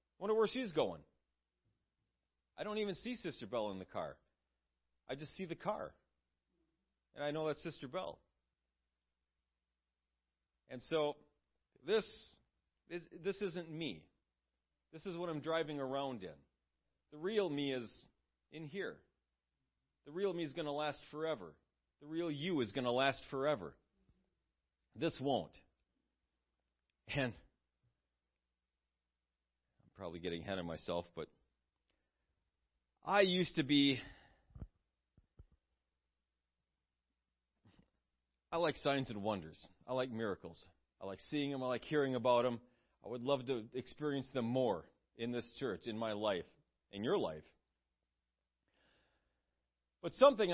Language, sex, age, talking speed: English, male, 40-59, 125 wpm